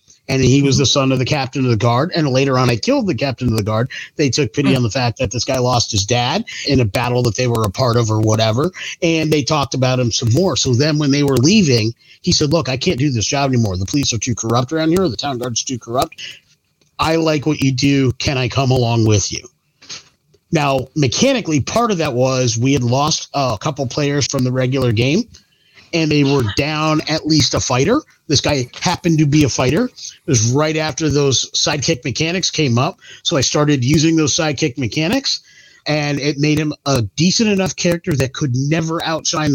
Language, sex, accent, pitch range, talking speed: English, male, American, 125-160 Hz, 225 wpm